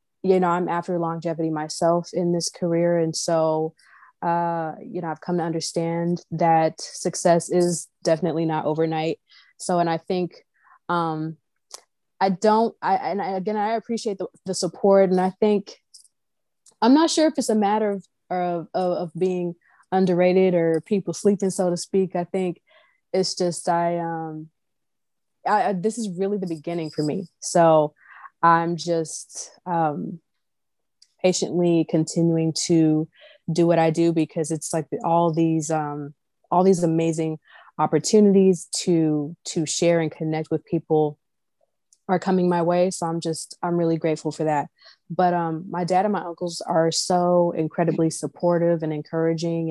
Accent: American